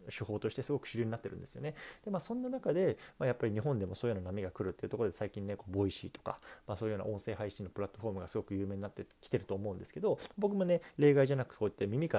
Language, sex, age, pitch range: Japanese, male, 20-39, 100-160 Hz